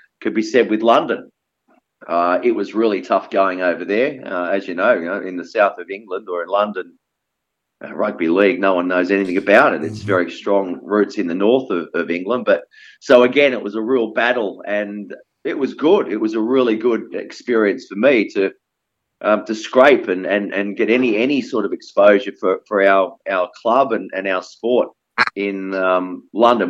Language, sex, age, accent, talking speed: English, male, 30-49, Australian, 205 wpm